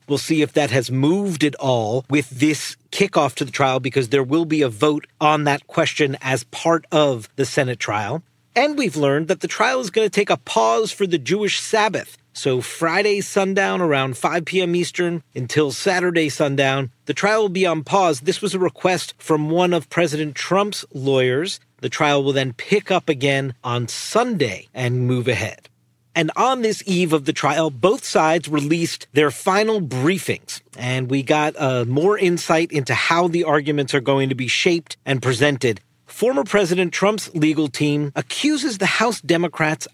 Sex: male